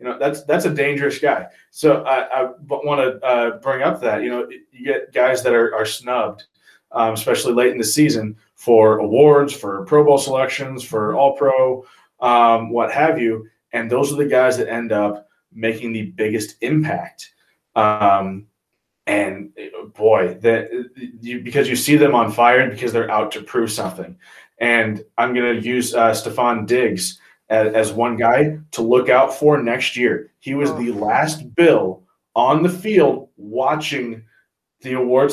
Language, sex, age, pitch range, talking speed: English, male, 20-39, 115-140 Hz, 170 wpm